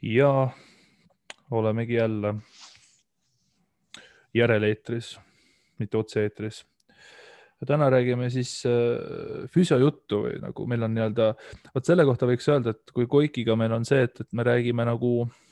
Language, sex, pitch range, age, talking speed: English, male, 115-130 Hz, 20-39, 130 wpm